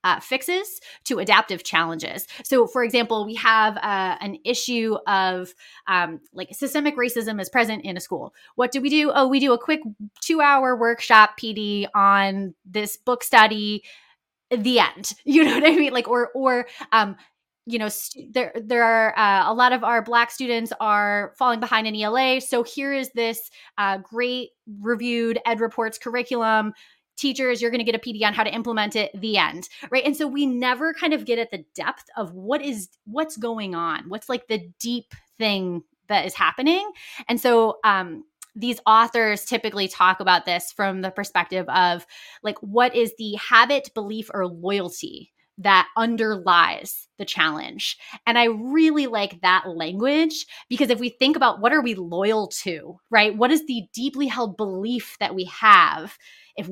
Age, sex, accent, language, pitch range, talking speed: 20-39, female, American, English, 205-255 Hz, 180 wpm